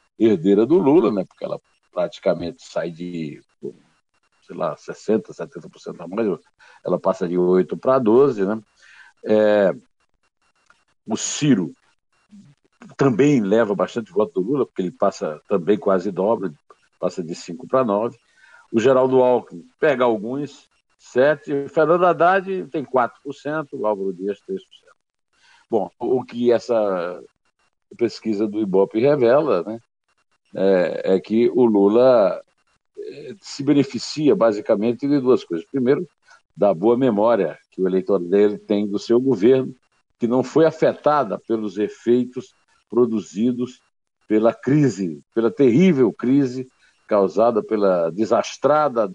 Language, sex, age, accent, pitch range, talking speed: Portuguese, male, 60-79, Brazilian, 105-135 Hz, 130 wpm